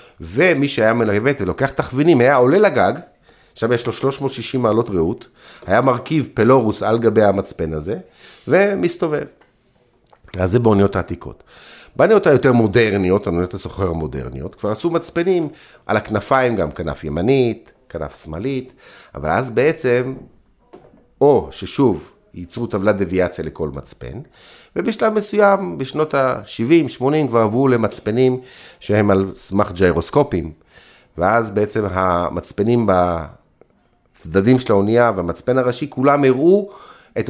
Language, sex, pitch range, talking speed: Hebrew, male, 95-135 Hz, 120 wpm